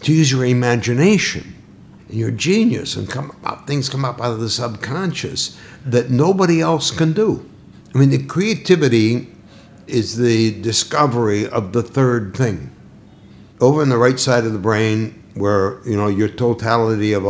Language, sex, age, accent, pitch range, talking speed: Hebrew, male, 60-79, American, 100-130 Hz, 165 wpm